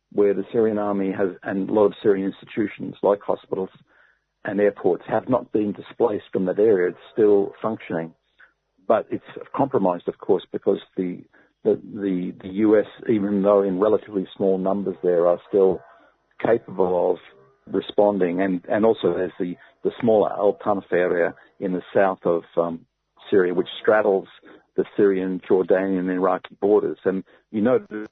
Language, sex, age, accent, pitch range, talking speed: English, male, 50-69, Australian, 90-100 Hz, 160 wpm